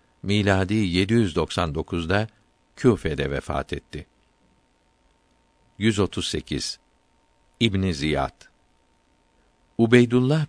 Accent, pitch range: native, 80-110 Hz